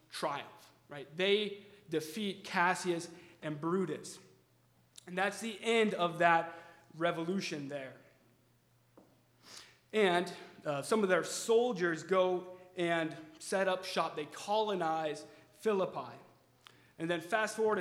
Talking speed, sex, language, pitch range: 110 wpm, male, English, 160-195 Hz